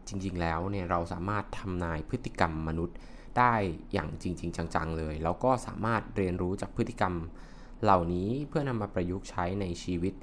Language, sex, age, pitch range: Thai, male, 20-39, 85-115 Hz